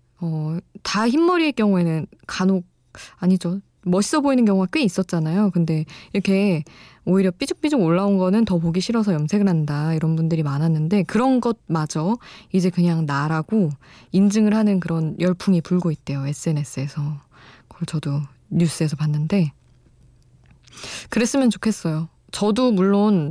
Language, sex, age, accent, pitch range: Korean, female, 20-39, native, 155-205 Hz